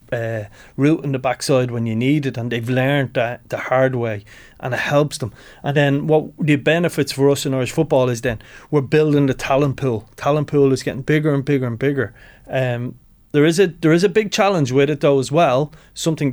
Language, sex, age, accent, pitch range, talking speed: English, male, 30-49, Irish, 120-140 Hz, 225 wpm